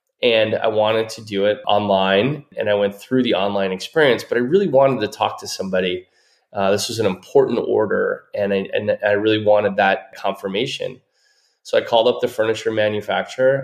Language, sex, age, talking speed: English, male, 20-39, 185 wpm